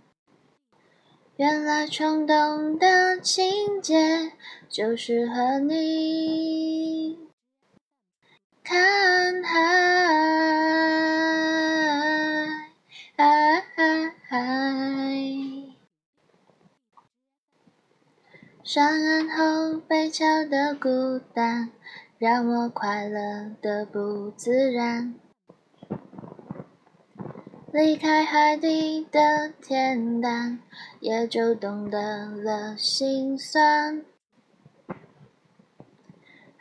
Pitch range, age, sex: 260-320 Hz, 10-29, female